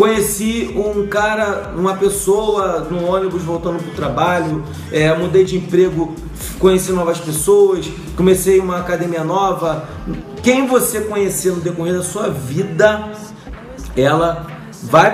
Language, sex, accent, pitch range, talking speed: Portuguese, male, Brazilian, 160-195 Hz, 125 wpm